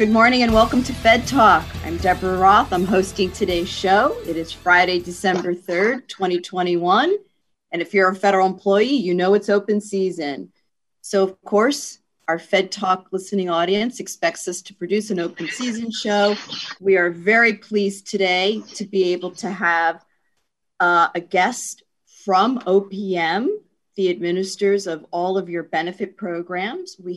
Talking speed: 155 wpm